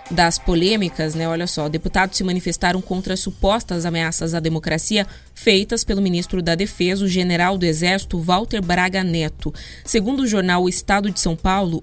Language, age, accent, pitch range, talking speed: Portuguese, 20-39, Brazilian, 180-215 Hz, 170 wpm